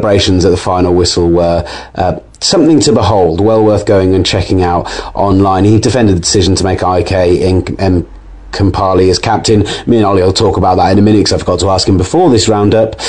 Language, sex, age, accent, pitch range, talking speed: English, male, 30-49, British, 95-110 Hz, 210 wpm